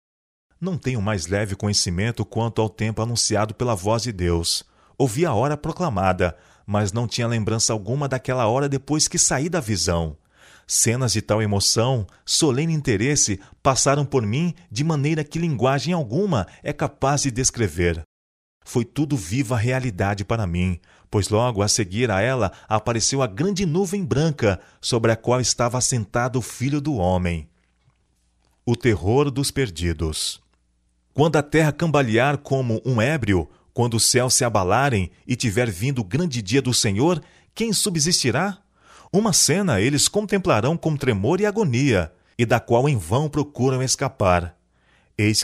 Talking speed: 150 wpm